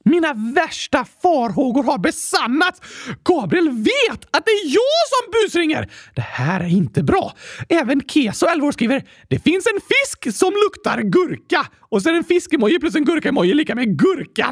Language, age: Swedish, 30-49